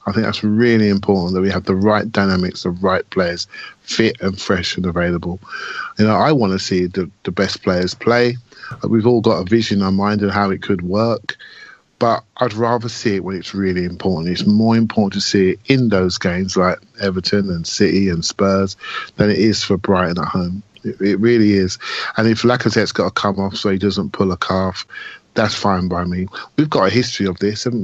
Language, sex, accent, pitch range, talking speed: English, male, British, 95-115 Hz, 220 wpm